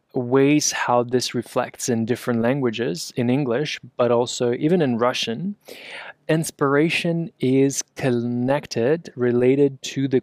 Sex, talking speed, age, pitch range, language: male, 115 wpm, 20-39, 120-135 Hz, English